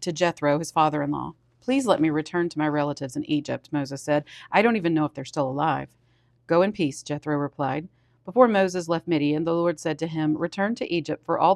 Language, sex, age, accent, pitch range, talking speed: English, female, 40-59, American, 145-175 Hz, 220 wpm